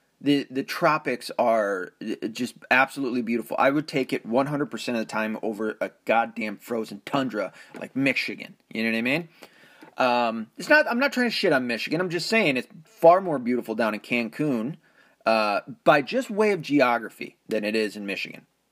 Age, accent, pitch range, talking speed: 30-49, American, 120-185 Hz, 185 wpm